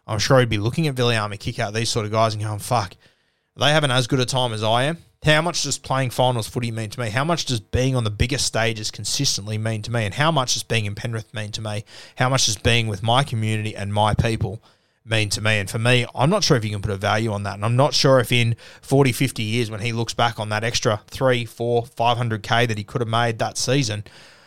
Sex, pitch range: male, 110-130 Hz